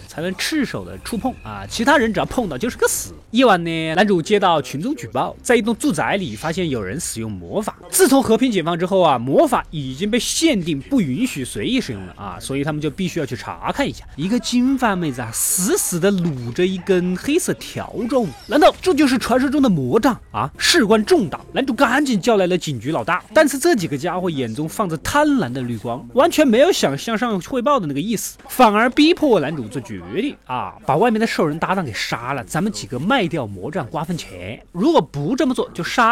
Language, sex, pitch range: Chinese, male, 140-240 Hz